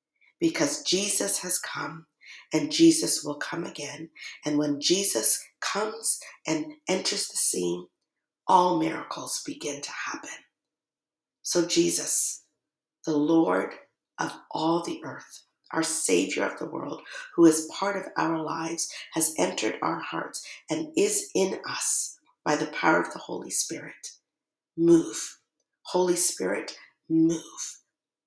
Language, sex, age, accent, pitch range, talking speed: English, female, 50-69, American, 155-180 Hz, 125 wpm